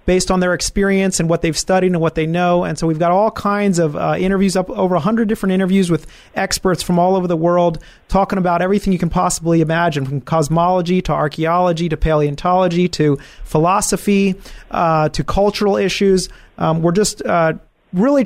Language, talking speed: English, 190 wpm